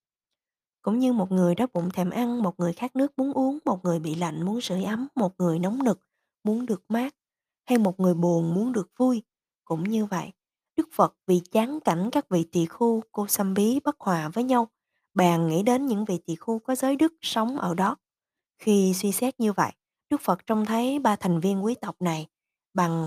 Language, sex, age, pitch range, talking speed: Vietnamese, female, 20-39, 175-235 Hz, 215 wpm